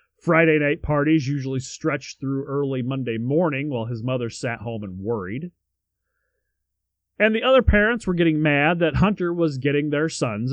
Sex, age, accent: male, 30-49, American